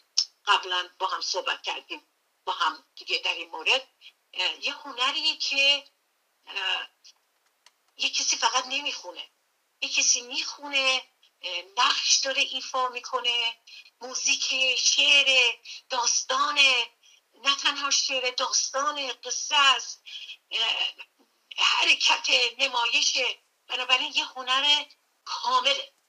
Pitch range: 255-335 Hz